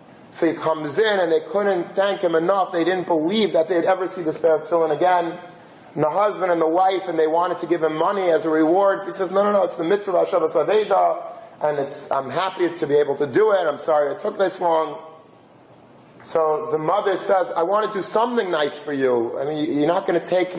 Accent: American